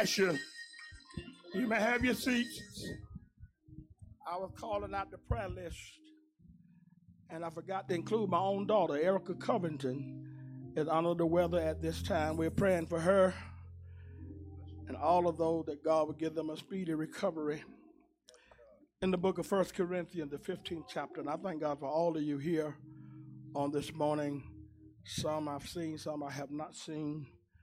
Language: English